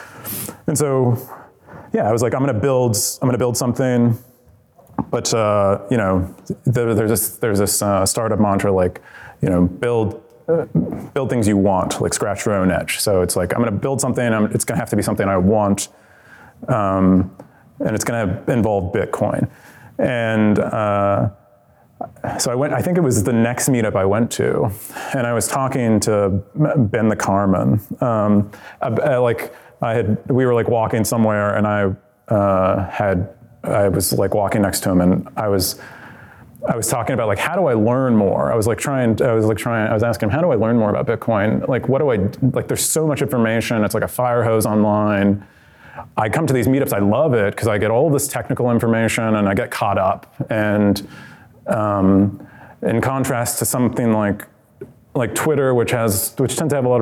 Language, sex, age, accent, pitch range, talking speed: English, male, 30-49, American, 100-125 Hz, 200 wpm